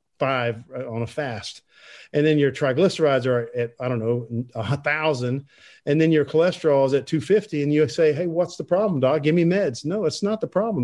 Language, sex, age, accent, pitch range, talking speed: English, male, 50-69, American, 125-165 Hz, 215 wpm